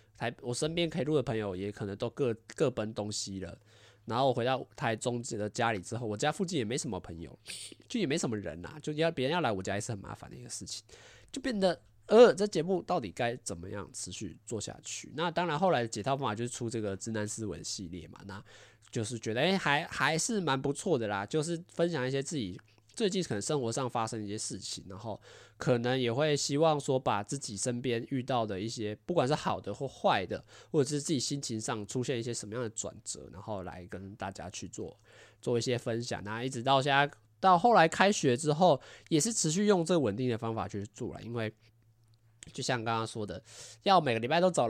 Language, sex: Chinese, male